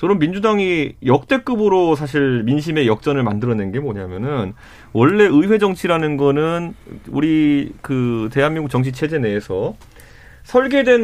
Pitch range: 125-195 Hz